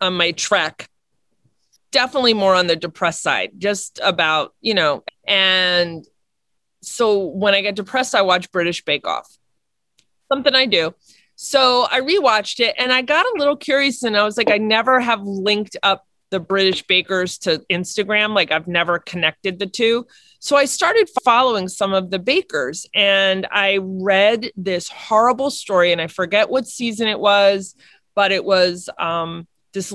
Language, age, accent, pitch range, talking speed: English, 30-49, American, 195-265 Hz, 165 wpm